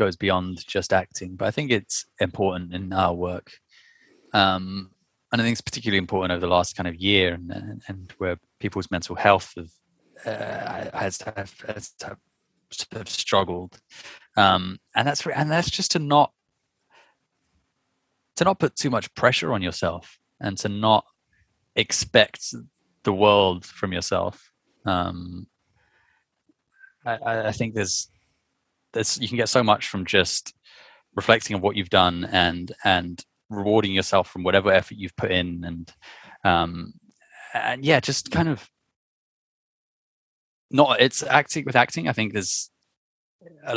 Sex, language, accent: male, English, British